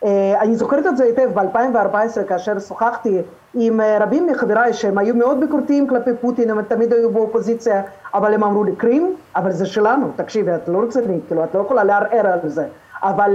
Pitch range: 205-245 Hz